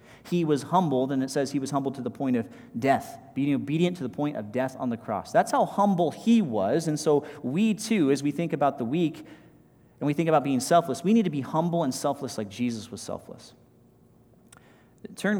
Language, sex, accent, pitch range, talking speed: English, male, American, 135-195 Hz, 220 wpm